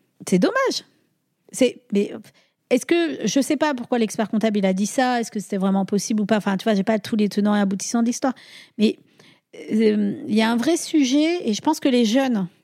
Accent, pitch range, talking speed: French, 200-255 Hz, 235 wpm